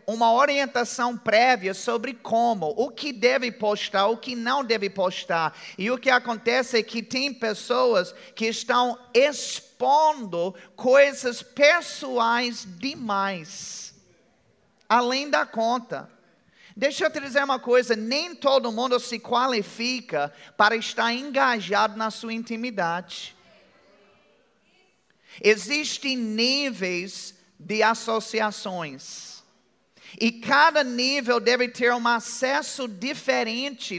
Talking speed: 105 wpm